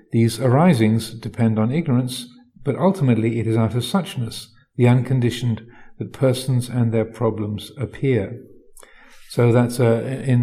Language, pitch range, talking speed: English, 110-130 Hz, 140 wpm